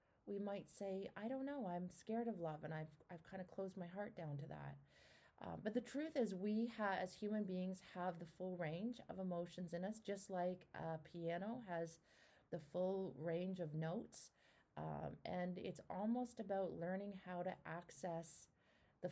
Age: 30-49